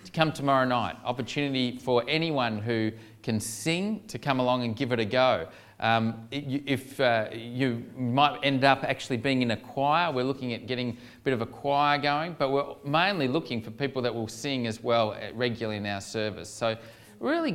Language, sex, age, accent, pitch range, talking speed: English, male, 30-49, Australian, 110-135 Hz, 190 wpm